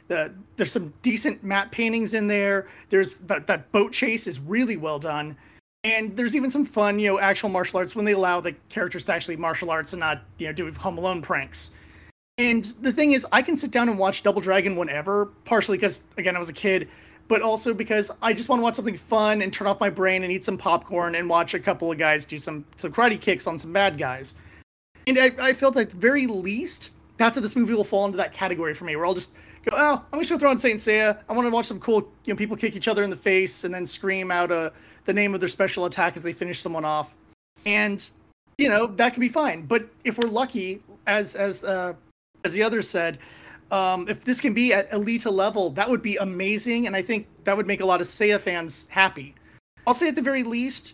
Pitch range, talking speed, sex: 180-230 Hz, 245 wpm, male